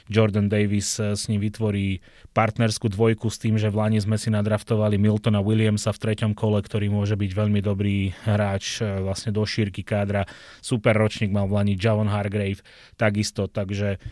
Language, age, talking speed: Slovak, 30-49, 170 wpm